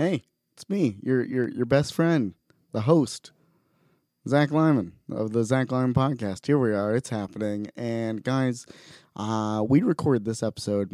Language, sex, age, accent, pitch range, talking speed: English, male, 20-39, American, 105-125 Hz, 160 wpm